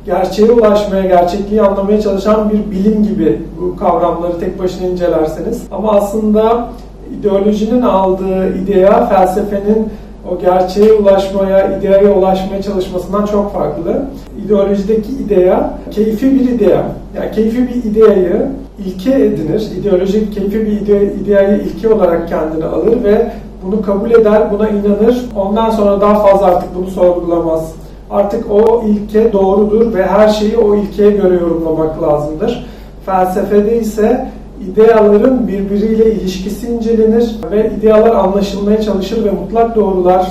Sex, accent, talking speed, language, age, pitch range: male, native, 125 wpm, Turkish, 40-59, 190-215 Hz